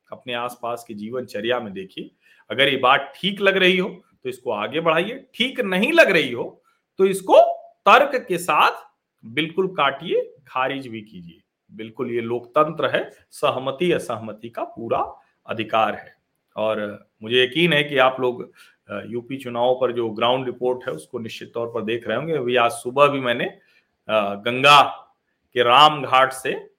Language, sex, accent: Hindi, male, native